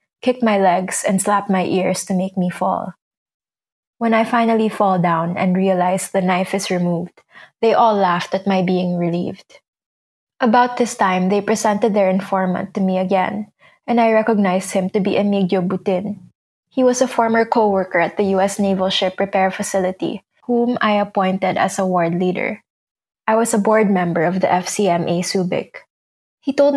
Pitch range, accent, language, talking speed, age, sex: 185-215 Hz, Filipino, English, 175 wpm, 20-39, female